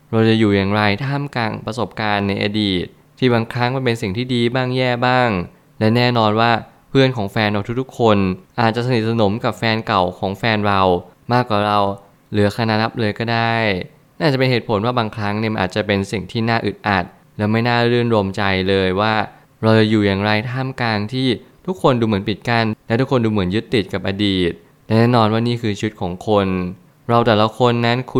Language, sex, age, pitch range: Thai, male, 20-39, 105-120 Hz